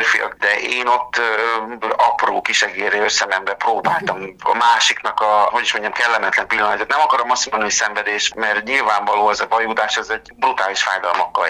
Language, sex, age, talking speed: Hungarian, male, 50-69, 165 wpm